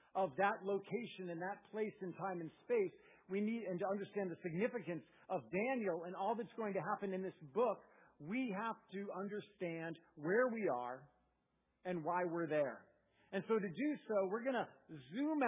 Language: English